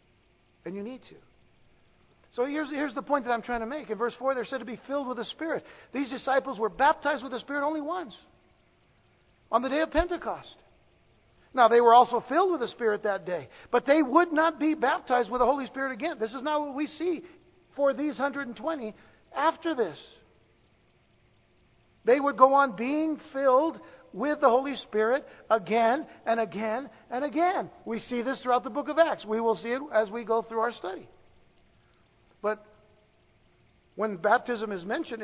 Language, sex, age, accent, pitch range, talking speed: English, male, 60-79, American, 210-285 Hz, 185 wpm